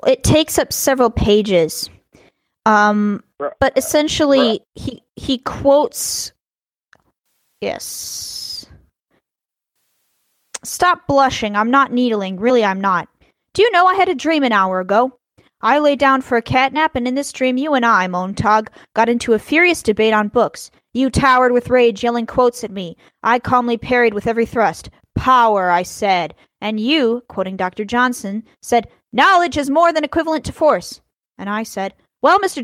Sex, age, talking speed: female, 20-39, 160 wpm